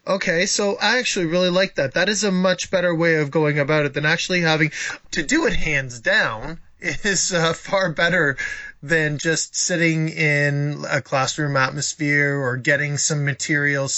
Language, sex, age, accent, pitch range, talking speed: English, male, 20-39, American, 135-165 Hz, 175 wpm